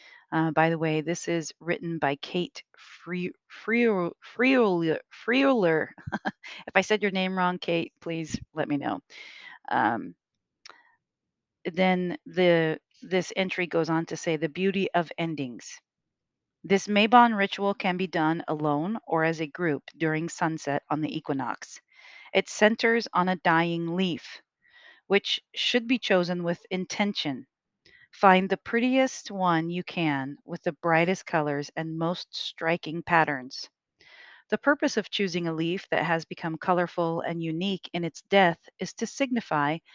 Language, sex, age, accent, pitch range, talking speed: English, female, 40-59, American, 165-205 Hz, 150 wpm